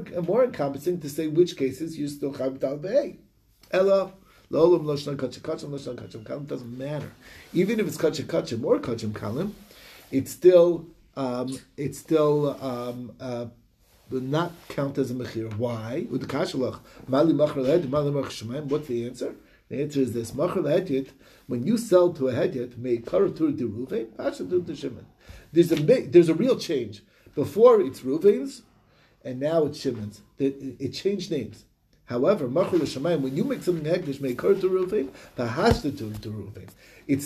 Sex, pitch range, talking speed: male, 130-180 Hz, 130 wpm